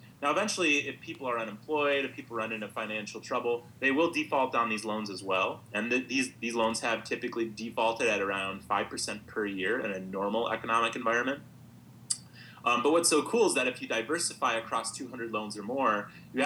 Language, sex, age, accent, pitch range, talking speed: English, male, 30-49, American, 105-130 Hz, 195 wpm